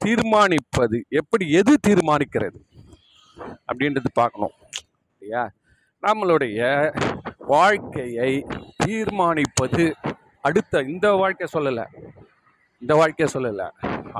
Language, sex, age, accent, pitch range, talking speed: Tamil, male, 40-59, native, 150-215 Hz, 70 wpm